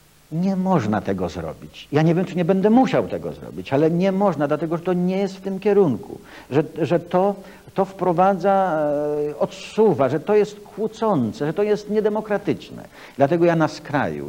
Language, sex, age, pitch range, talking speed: Polish, male, 60-79, 110-180 Hz, 175 wpm